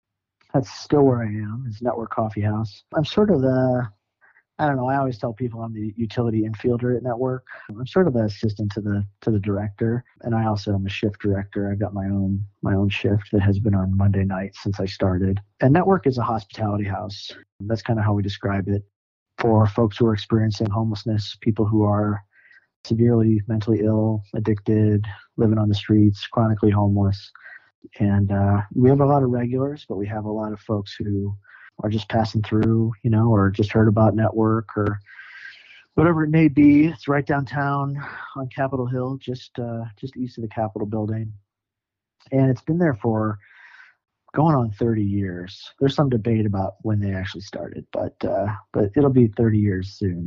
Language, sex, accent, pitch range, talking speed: English, male, American, 105-125 Hz, 195 wpm